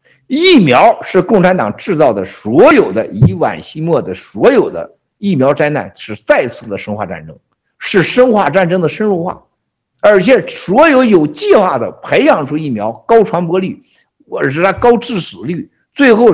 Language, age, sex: Chinese, 60-79, male